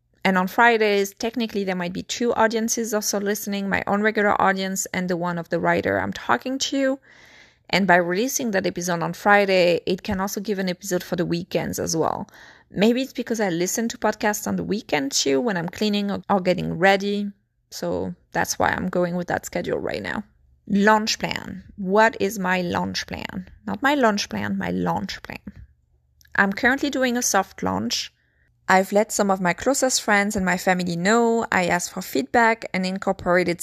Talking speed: 190 wpm